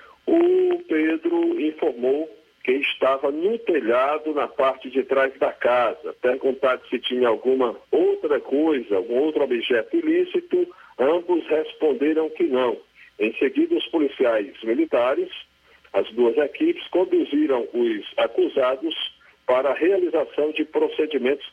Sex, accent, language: male, Brazilian, Portuguese